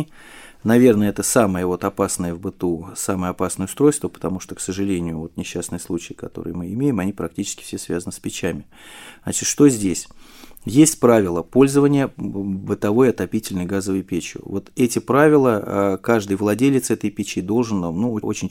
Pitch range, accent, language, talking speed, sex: 95-120 Hz, native, Russian, 145 wpm, male